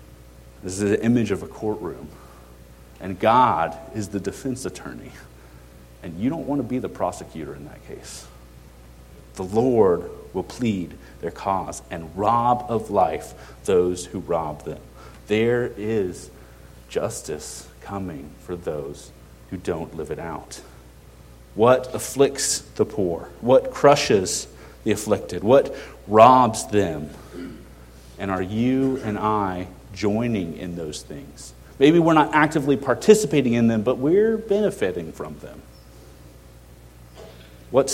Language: English